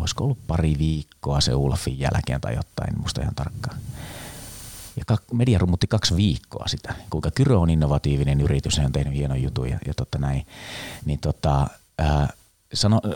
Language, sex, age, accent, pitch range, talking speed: Finnish, male, 30-49, native, 70-95 Hz, 145 wpm